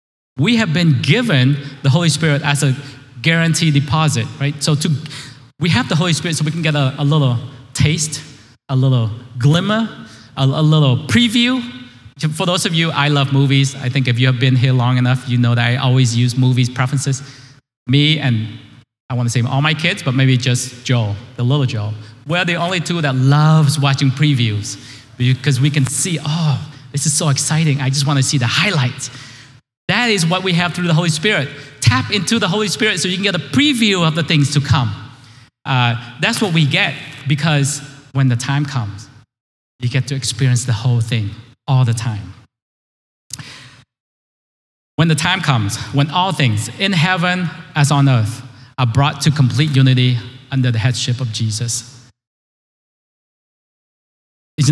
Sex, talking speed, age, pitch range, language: male, 180 wpm, 20-39, 125-155 Hz, English